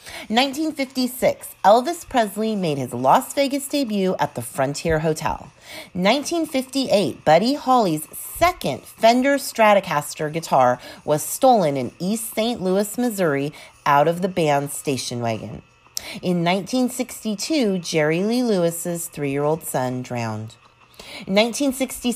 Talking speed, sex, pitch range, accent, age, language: 135 wpm, female, 145-240 Hz, American, 40-59, English